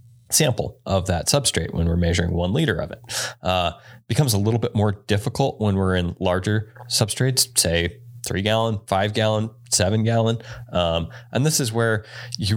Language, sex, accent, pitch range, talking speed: English, male, American, 90-120 Hz, 170 wpm